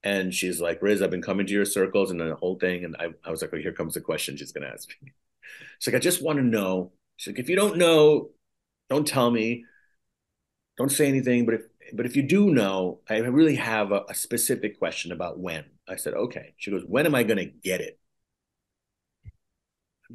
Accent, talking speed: American, 225 wpm